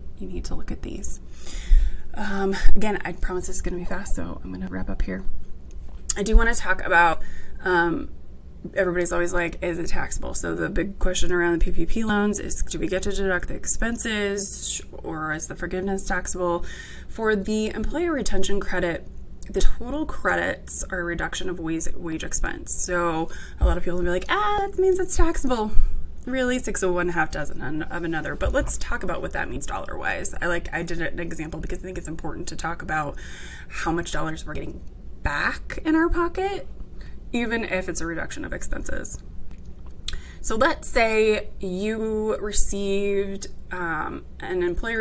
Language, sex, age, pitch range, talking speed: English, female, 20-39, 155-205 Hz, 185 wpm